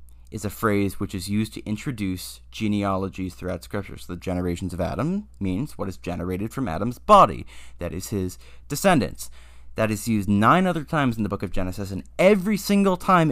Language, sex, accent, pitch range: English, male, American, 85-120 Hz